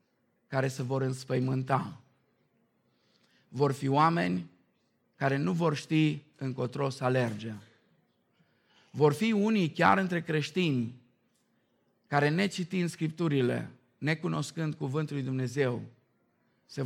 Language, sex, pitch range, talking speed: Romanian, male, 125-155 Hz, 100 wpm